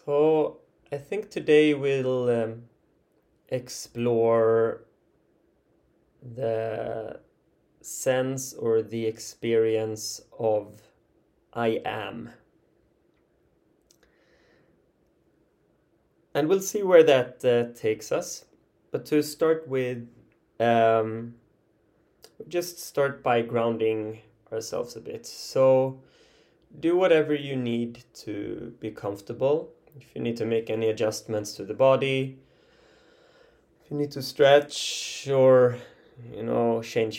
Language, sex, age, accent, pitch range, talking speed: English, male, 20-39, Swedish, 115-140 Hz, 100 wpm